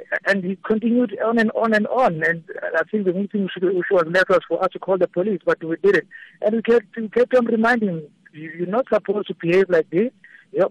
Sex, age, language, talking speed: male, 60-79, English, 235 wpm